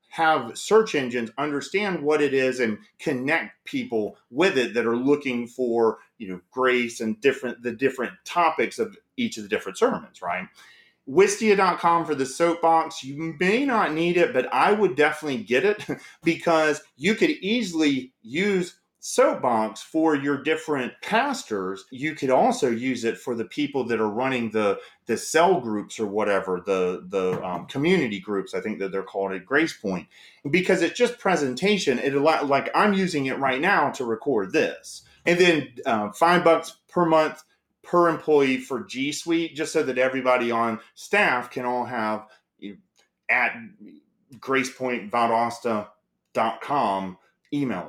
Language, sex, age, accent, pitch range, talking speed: English, male, 30-49, American, 120-170 Hz, 160 wpm